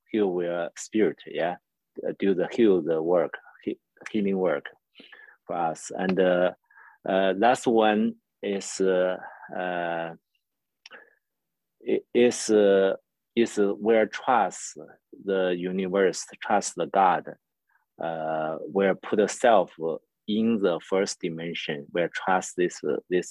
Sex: male